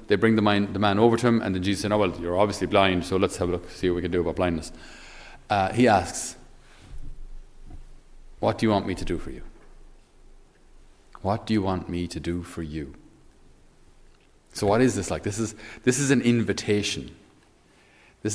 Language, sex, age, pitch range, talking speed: English, male, 40-59, 85-110 Hz, 200 wpm